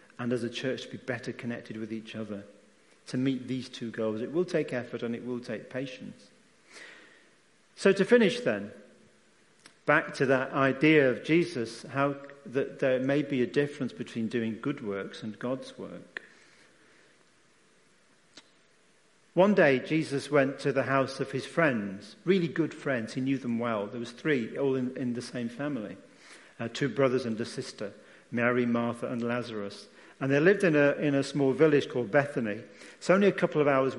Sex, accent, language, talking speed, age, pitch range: male, British, English, 180 wpm, 40-59, 120-155 Hz